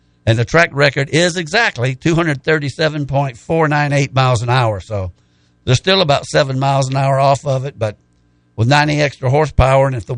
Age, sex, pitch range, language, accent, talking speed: 60-79, male, 120-160 Hz, English, American, 170 wpm